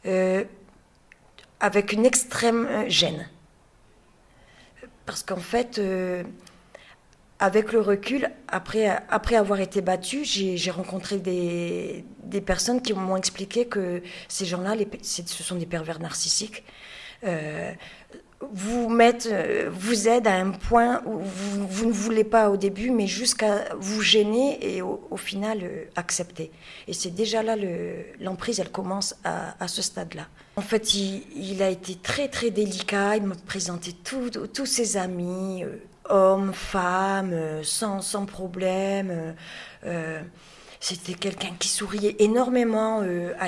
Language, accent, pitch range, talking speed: French, French, 185-220 Hz, 140 wpm